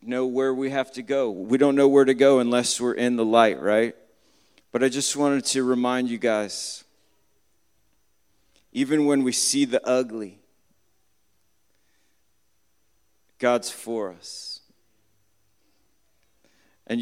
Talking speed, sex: 125 wpm, male